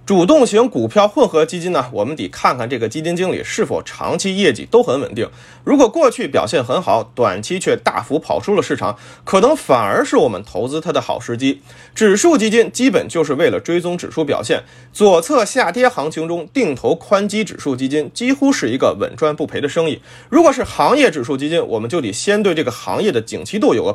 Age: 30-49